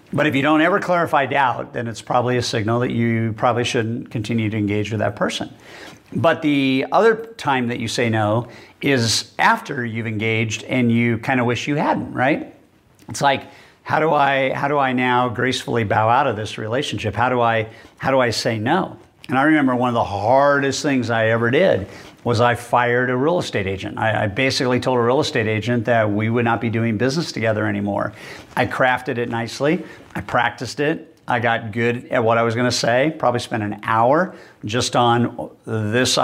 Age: 50-69